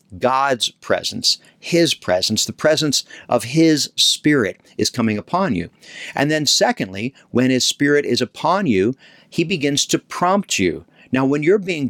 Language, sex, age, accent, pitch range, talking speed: English, male, 50-69, American, 105-135 Hz, 155 wpm